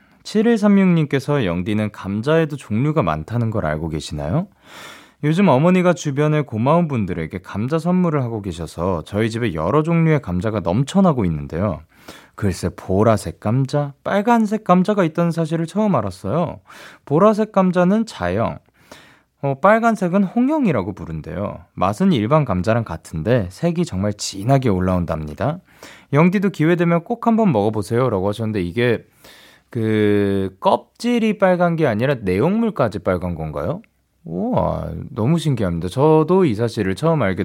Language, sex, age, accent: Korean, male, 20-39, native